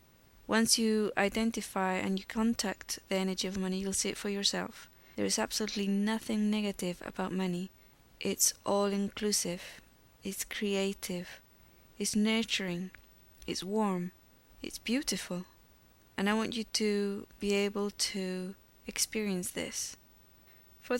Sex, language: female, English